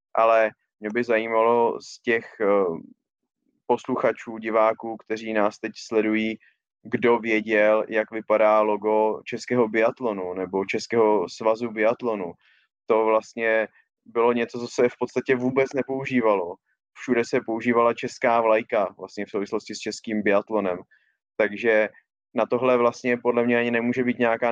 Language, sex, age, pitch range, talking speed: Czech, male, 20-39, 110-120 Hz, 130 wpm